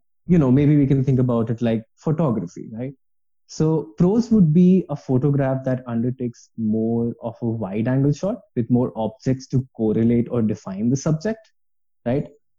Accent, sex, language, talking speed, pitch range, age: Indian, male, English, 165 wpm, 115-155 Hz, 20-39